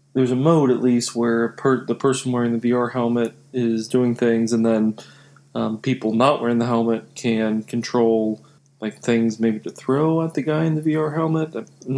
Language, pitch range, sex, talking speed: English, 120-145 Hz, male, 195 wpm